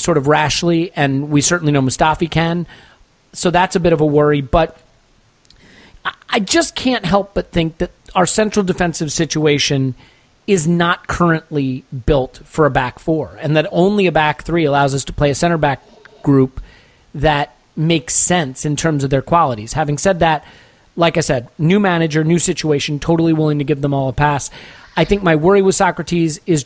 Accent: American